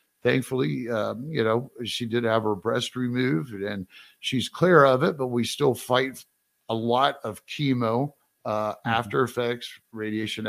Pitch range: 95-120 Hz